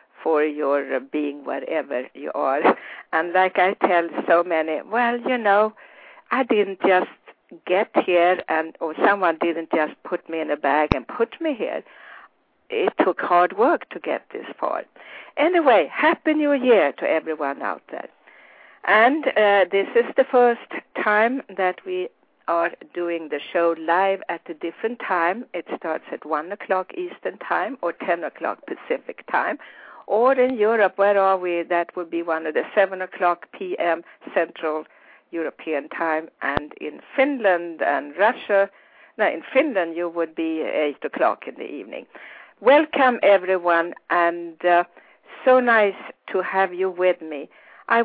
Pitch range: 165-220 Hz